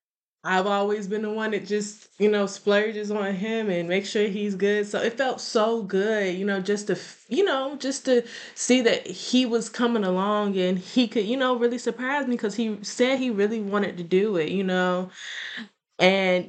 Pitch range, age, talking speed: 175-215 Hz, 10-29, 205 wpm